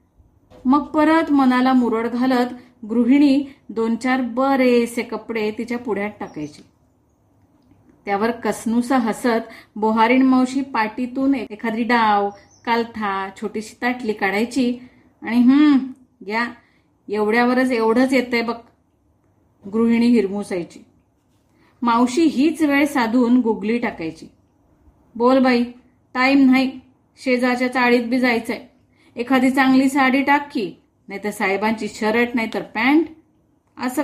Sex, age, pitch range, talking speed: female, 30-49, 215-260 Hz, 105 wpm